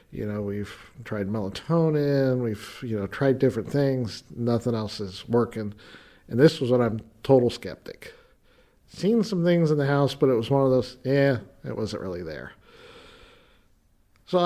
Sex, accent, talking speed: male, American, 165 wpm